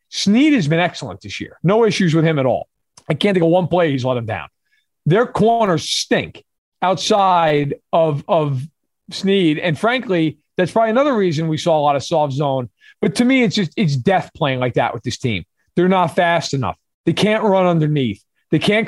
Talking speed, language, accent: 205 wpm, English, American